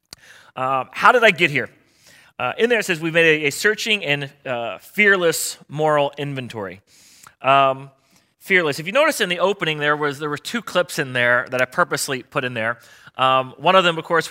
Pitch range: 125-160 Hz